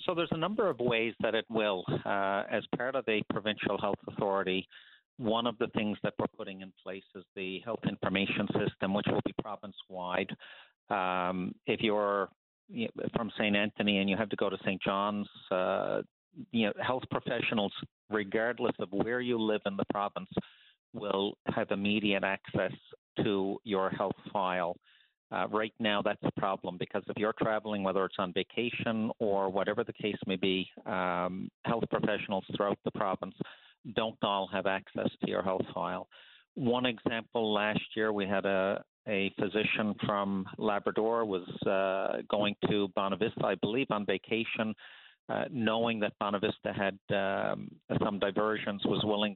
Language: English